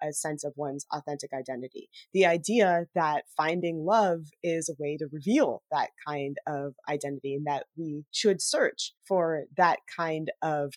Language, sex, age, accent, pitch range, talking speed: English, female, 20-39, American, 155-195 Hz, 160 wpm